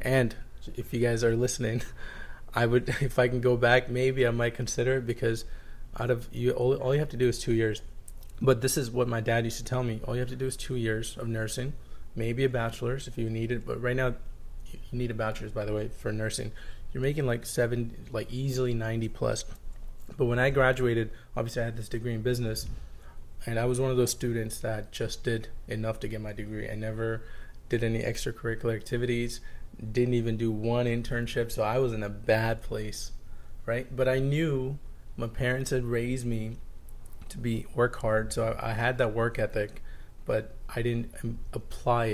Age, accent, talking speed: 20-39, American, 210 wpm